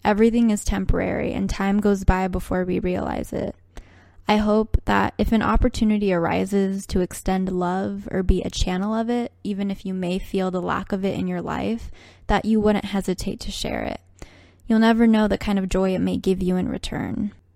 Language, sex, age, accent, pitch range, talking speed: English, female, 10-29, American, 185-215 Hz, 200 wpm